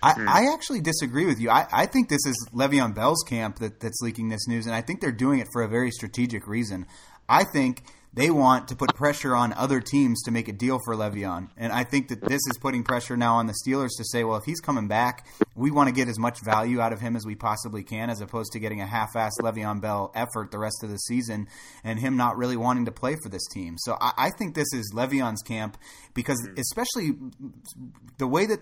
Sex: male